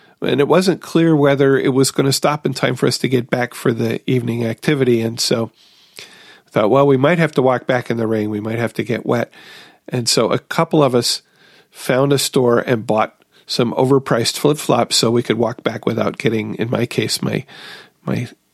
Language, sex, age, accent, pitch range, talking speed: English, male, 40-59, American, 115-145 Hz, 215 wpm